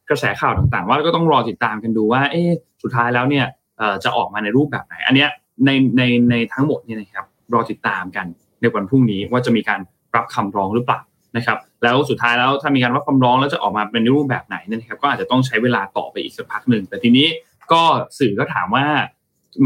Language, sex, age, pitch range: Thai, male, 20-39, 110-140 Hz